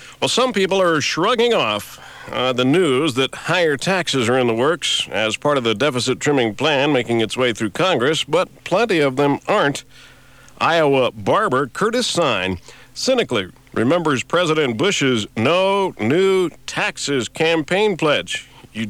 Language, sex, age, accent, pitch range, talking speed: English, male, 50-69, American, 125-180 Hz, 145 wpm